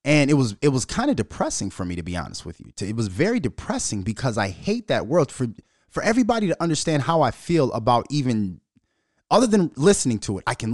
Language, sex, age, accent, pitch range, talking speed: English, male, 30-49, American, 115-165 Hz, 230 wpm